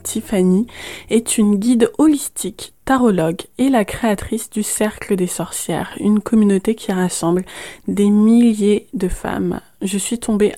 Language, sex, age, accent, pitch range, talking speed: French, female, 20-39, French, 185-225 Hz, 135 wpm